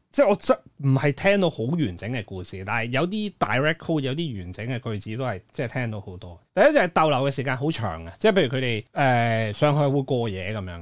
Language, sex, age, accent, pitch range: Chinese, male, 30-49, native, 115-170 Hz